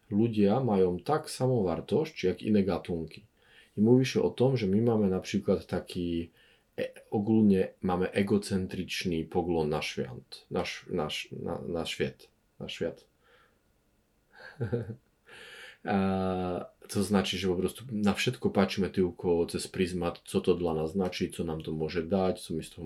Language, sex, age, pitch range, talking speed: English, male, 30-49, 85-125 Hz, 145 wpm